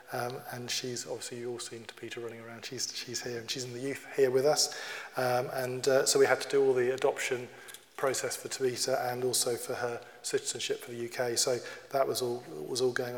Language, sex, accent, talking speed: English, male, British, 230 wpm